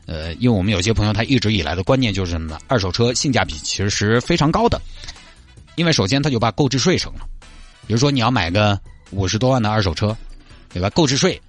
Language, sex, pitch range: Chinese, male, 90-130 Hz